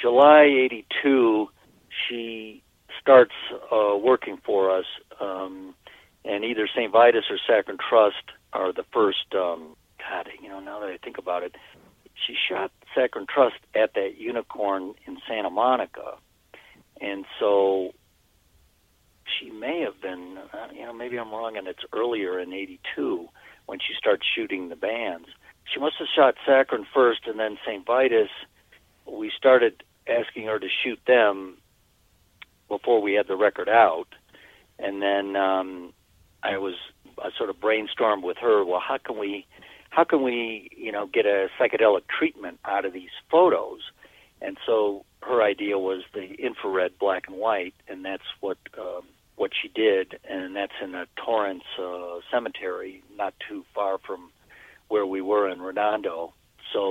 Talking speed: 155 wpm